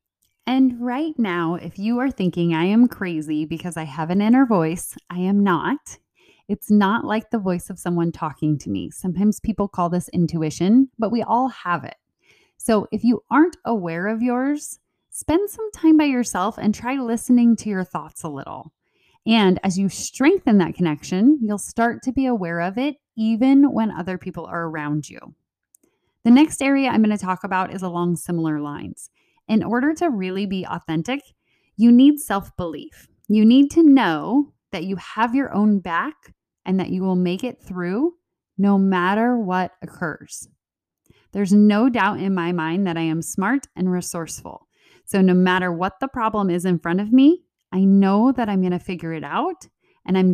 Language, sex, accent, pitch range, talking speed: English, female, American, 175-245 Hz, 185 wpm